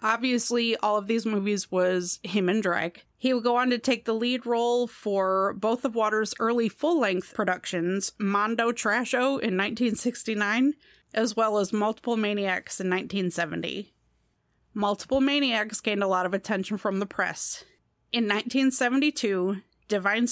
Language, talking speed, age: English, 145 wpm, 30-49